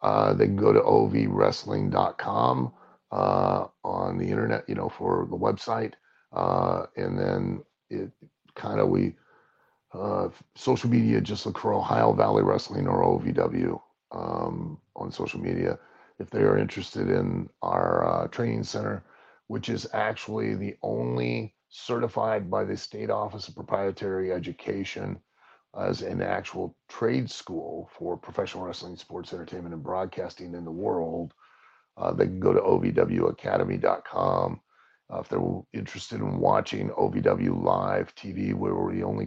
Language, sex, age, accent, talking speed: English, male, 40-59, American, 140 wpm